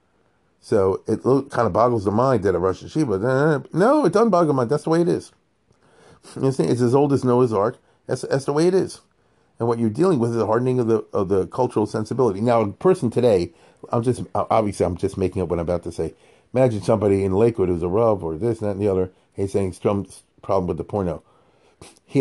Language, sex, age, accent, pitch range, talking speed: English, male, 40-59, American, 95-130 Hz, 240 wpm